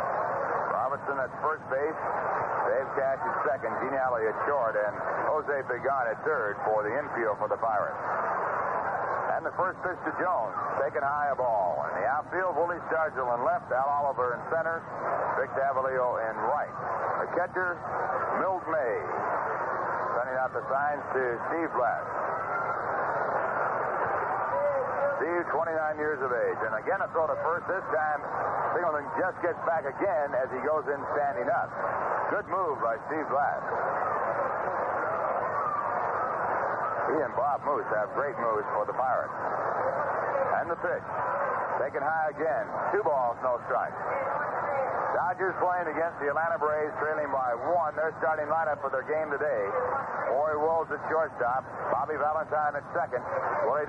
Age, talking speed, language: 60-79, 150 wpm, English